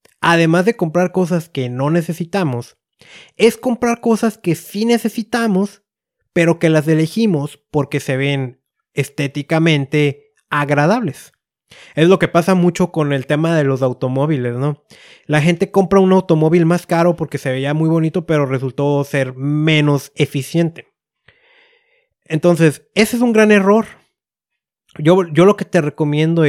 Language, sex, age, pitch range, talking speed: Spanish, male, 30-49, 150-210 Hz, 145 wpm